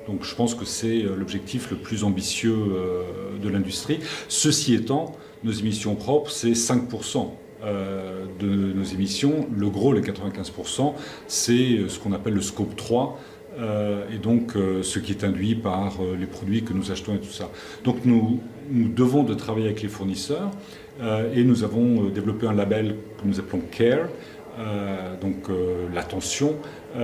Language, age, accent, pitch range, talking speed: French, 40-59, French, 100-120 Hz, 150 wpm